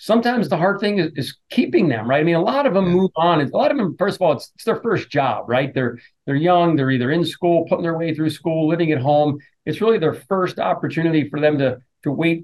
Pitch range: 140-180 Hz